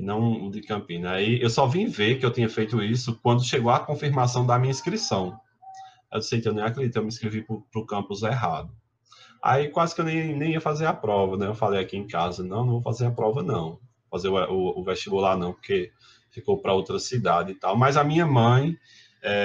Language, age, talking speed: Portuguese, 20-39, 240 wpm